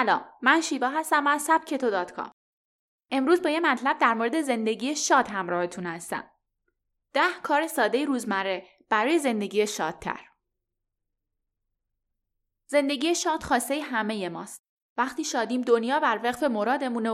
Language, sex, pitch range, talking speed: Persian, female, 210-290 Hz, 125 wpm